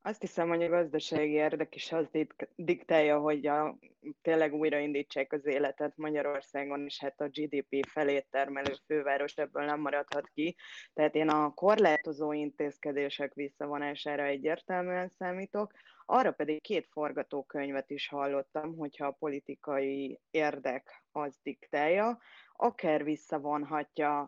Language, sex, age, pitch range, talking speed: Hungarian, female, 20-39, 140-160 Hz, 120 wpm